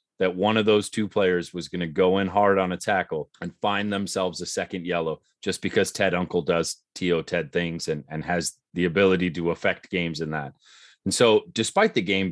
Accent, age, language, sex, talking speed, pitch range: American, 30-49, English, male, 215 wpm, 90-110 Hz